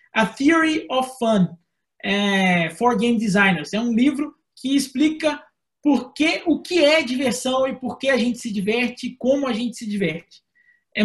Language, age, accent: Portuguese, 20-39, Brazilian